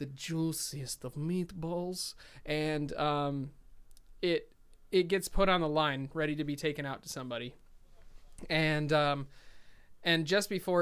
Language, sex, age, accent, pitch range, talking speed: English, male, 20-39, American, 135-160 Hz, 140 wpm